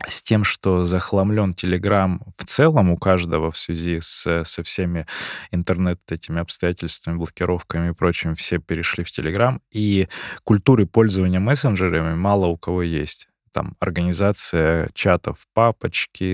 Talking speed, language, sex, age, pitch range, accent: 130 wpm, Russian, male, 20-39, 85-100 Hz, native